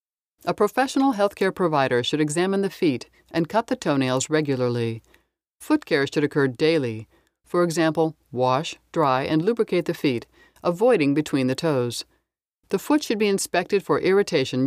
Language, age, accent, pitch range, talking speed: English, 60-79, American, 140-210 Hz, 155 wpm